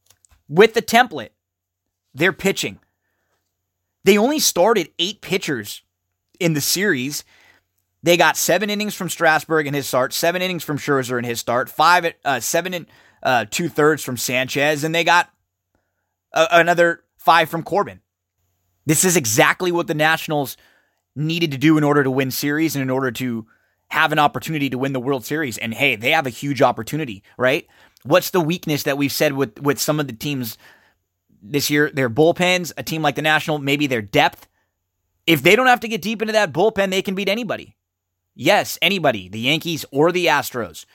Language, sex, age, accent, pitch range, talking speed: English, male, 20-39, American, 110-170 Hz, 185 wpm